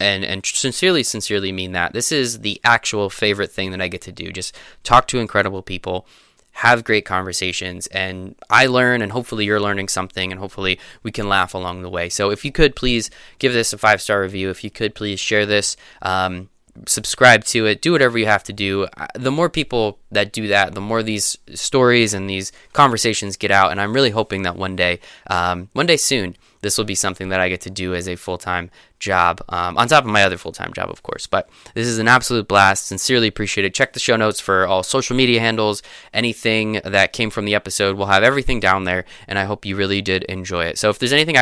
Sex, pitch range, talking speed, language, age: male, 95-115 Hz, 225 wpm, English, 20-39